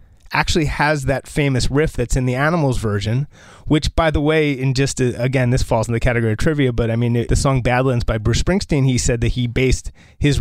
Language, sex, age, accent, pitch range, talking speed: English, male, 30-49, American, 110-135 Hz, 235 wpm